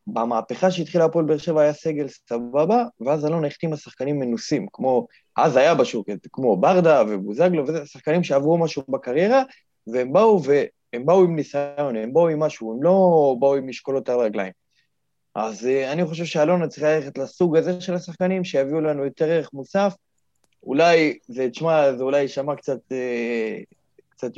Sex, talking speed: male, 160 wpm